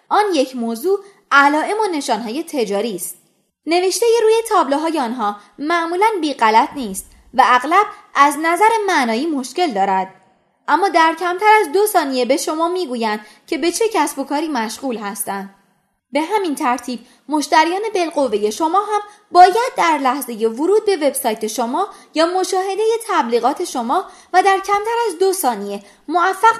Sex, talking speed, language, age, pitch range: female, 150 wpm, Persian, 20-39, 235-375 Hz